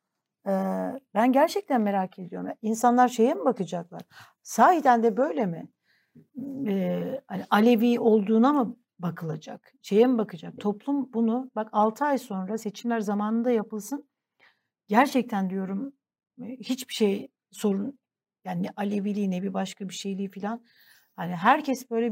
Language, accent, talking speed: Turkish, native, 130 wpm